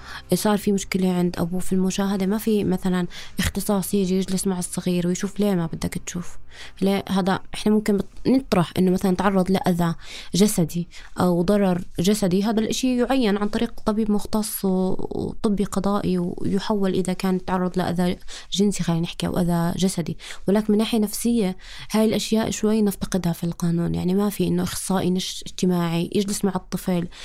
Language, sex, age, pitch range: Arabic, female, 20-39, 185-235 Hz